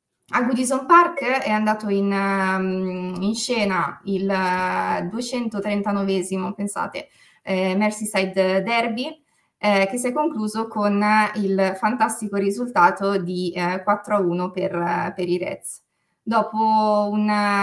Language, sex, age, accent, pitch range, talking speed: Italian, female, 20-39, native, 185-210 Hz, 110 wpm